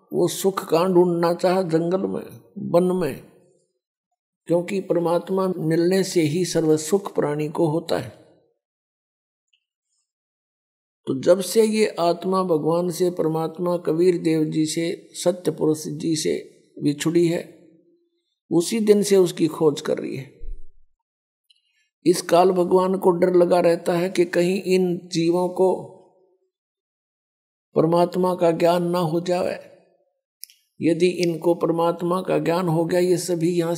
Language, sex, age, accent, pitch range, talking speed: Hindi, male, 60-79, native, 165-190 Hz, 135 wpm